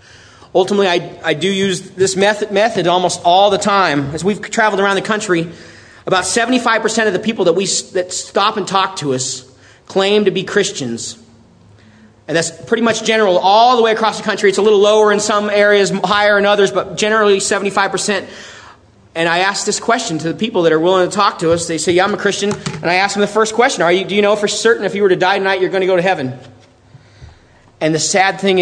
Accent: American